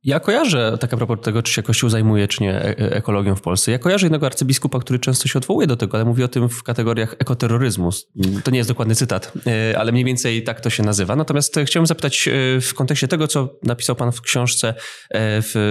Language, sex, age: Polish, male, 20-39